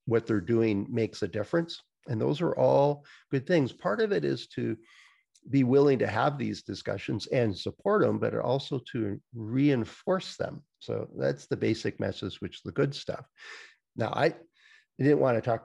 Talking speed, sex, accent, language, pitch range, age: 180 wpm, male, American, English, 110-150 Hz, 50-69